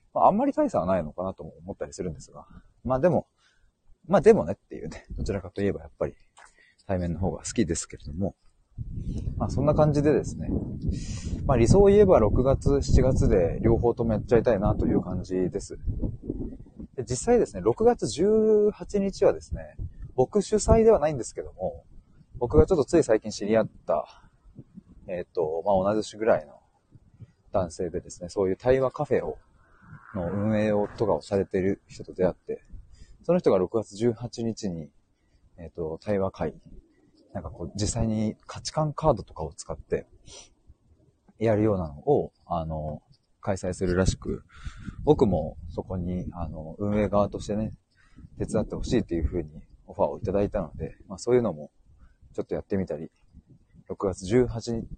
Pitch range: 90-130 Hz